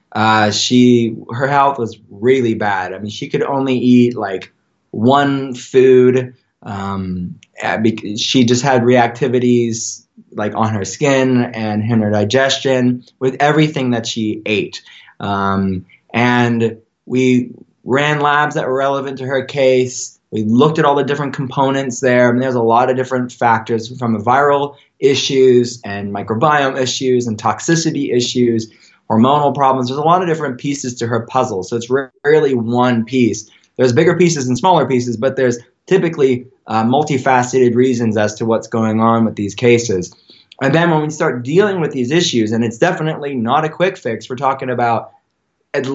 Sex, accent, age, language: male, American, 20-39, English